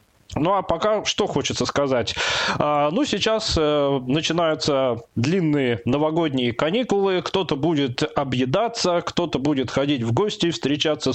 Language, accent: Russian, native